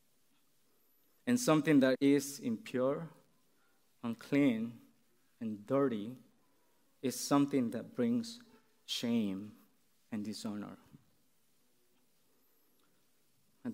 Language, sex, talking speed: English, male, 70 wpm